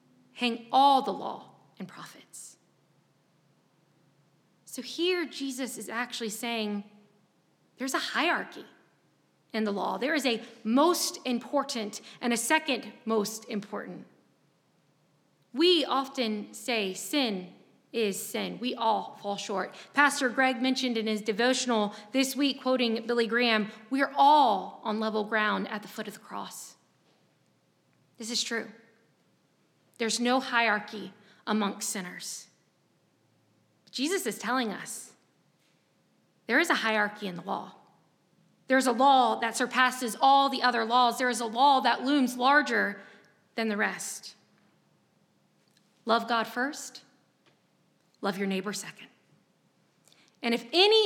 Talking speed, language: 130 wpm, English